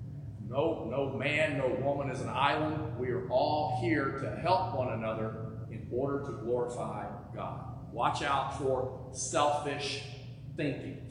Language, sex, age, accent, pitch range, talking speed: English, male, 40-59, American, 125-150 Hz, 140 wpm